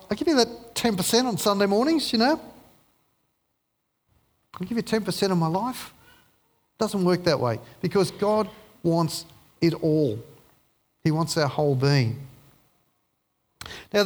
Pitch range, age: 145-210 Hz, 40-59